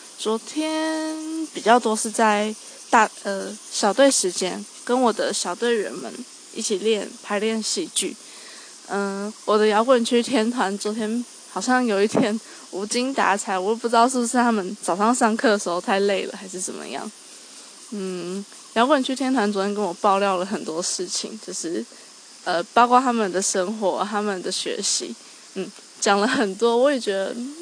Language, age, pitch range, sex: Chinese, 20-39, 200-255 Hz, female